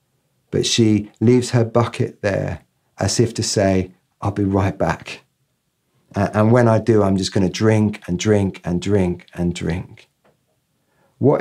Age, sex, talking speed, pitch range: 40-59, male, 160 wpm, 100-120 Hz